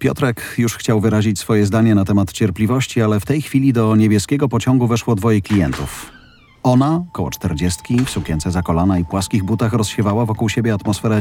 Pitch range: 95-125 Hz